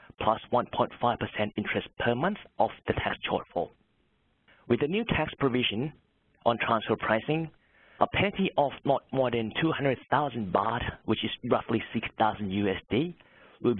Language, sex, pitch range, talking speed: English, male, 110-130 Hz, 135 wpm